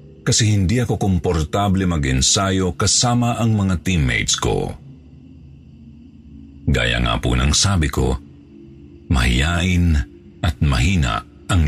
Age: 50-69